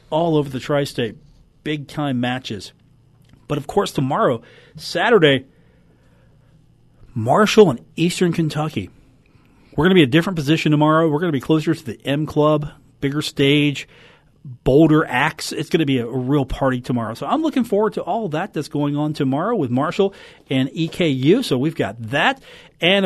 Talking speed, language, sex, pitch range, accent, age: 170 wpm, English, male, 135-170 Hz, American, 40-59